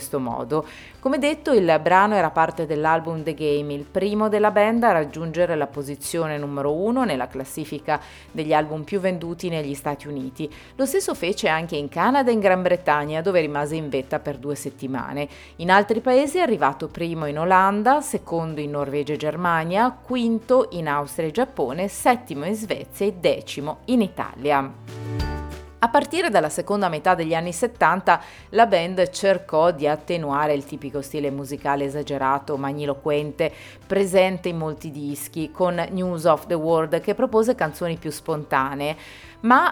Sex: female